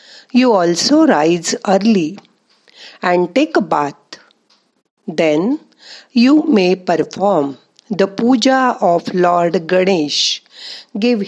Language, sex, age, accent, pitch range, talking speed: Marathi, female, 50-69, native, 175-235 Hz, 95 wpm